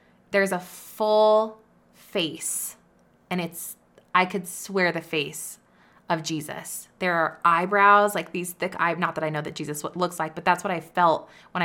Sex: female